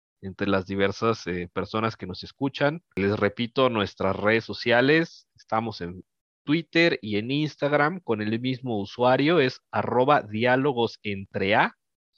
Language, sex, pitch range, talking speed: Spanish, male, 105-135 Hz, 135 wpm